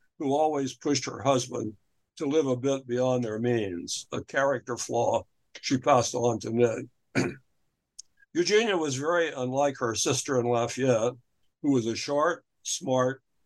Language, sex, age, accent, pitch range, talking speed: English, male, 60-79, American, 125-150 Hz, 145 wpm